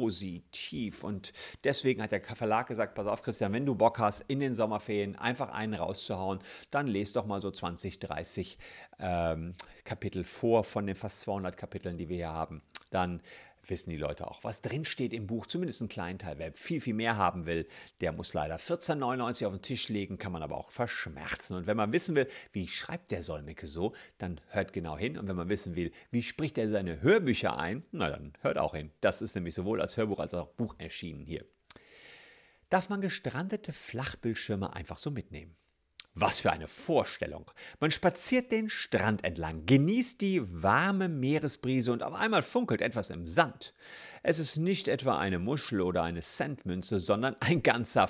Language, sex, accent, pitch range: German, male, German, 95-155 Hz